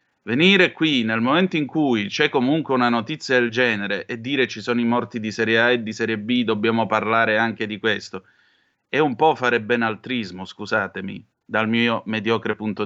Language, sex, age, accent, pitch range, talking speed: Italian, male, 30-49, native, 105-125 Hz, 185 wpm